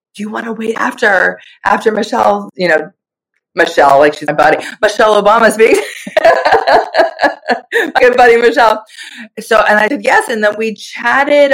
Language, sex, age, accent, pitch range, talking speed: English, female, 30-49, American, 175-225 Hz, 155 wpm